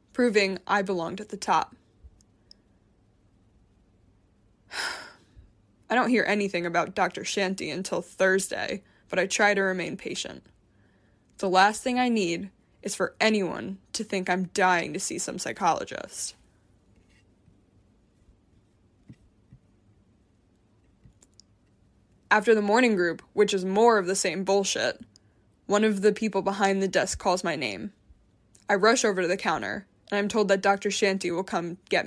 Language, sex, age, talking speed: English, female, 10-29, 135 wpm